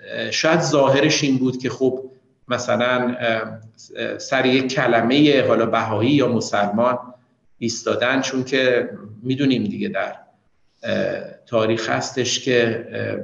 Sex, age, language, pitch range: male, 50-69, Persian, 120-150 Hz